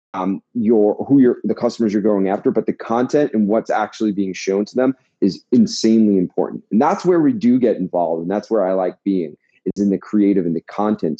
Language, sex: English, male